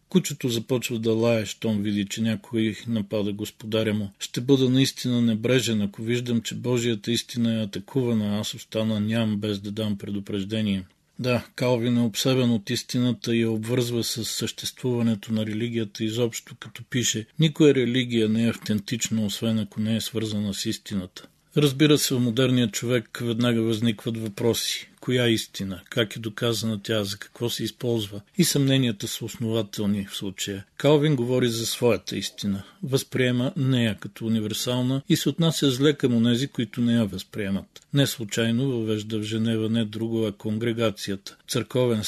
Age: 40-59